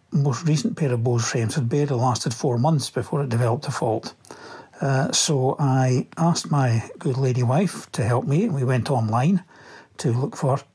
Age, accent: 60-79, British